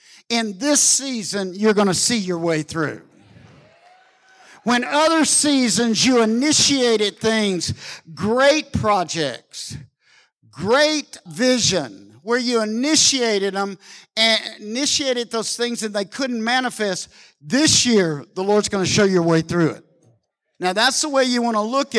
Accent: American